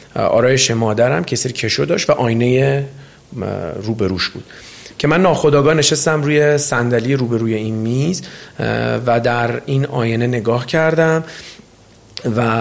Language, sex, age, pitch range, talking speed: Persian, male, 40-59, 110-145 Hz, 120 wpm